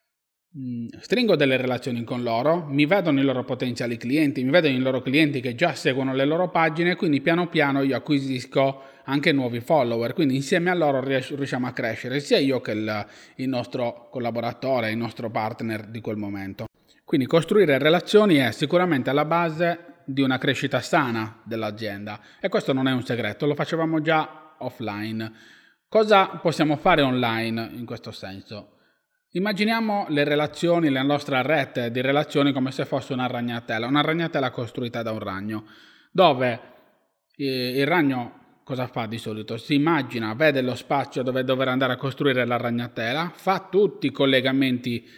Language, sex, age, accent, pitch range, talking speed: Italian, male, 30-49, native, 120-150 Hz, 160 wpm